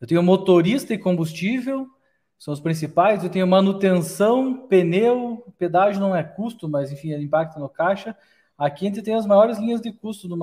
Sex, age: male, 20-39